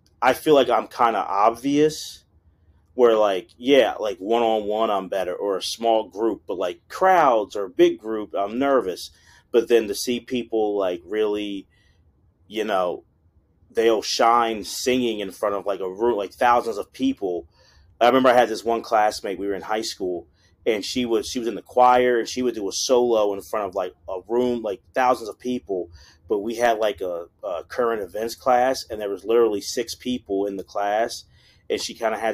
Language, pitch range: English, 100-125 Hz